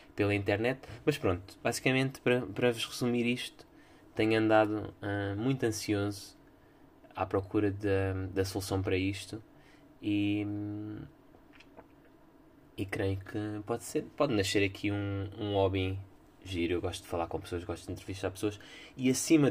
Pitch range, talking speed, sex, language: 100-130 Hz, 140 wpm, male, Portuguese